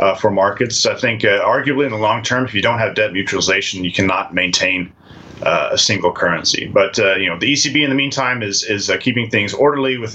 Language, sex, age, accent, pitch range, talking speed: English, male, 30-49, American, 95-130 Hz, 235 wpm